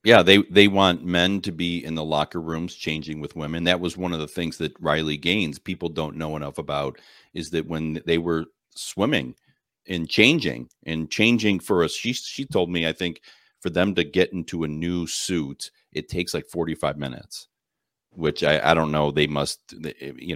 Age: 40-59